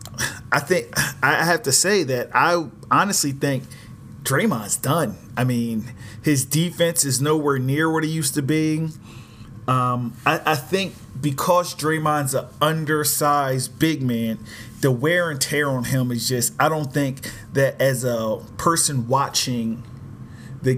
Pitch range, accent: 120-140 Hz, American